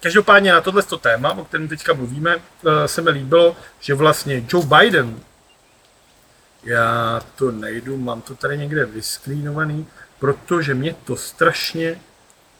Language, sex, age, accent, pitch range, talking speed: Czech, male, 40-59, native, 140-180 Hz, 130 wpm